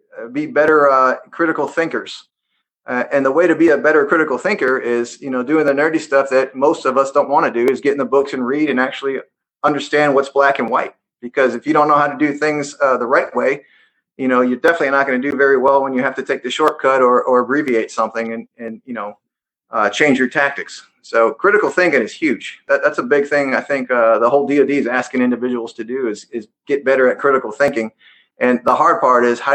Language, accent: English, American